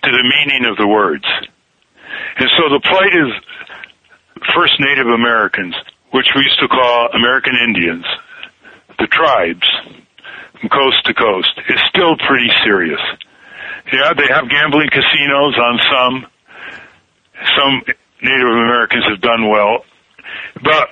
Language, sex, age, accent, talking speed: English, male, 60-79, American, 130 wpm